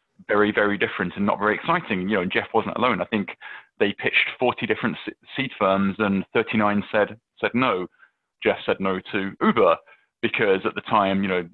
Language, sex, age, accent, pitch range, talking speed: English, male, 30-49, British, 95-120 Hz, 185 wpm